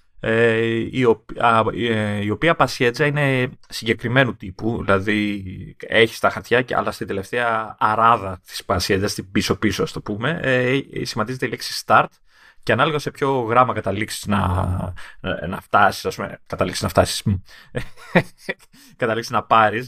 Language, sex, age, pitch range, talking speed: Greek, male, 30-49, 110-145 Hz, 155 wpm